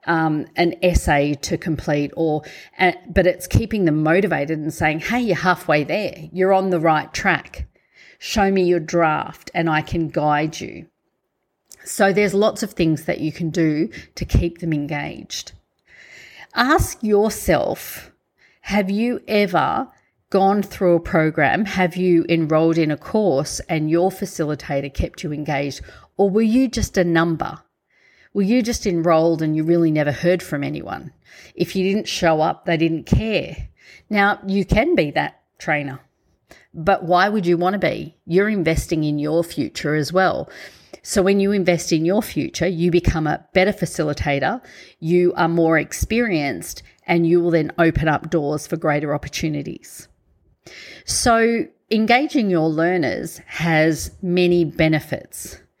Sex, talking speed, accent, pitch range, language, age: female, 155 wpm, Australian, 155-195 Hz, English, 40-59